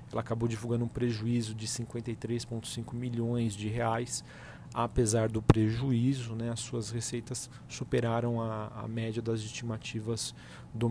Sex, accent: male, Brazilian